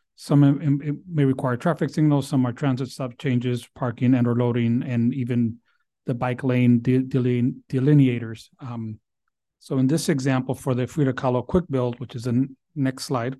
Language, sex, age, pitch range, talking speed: English, male, 30-49, 125-140 Hz, 165 wpm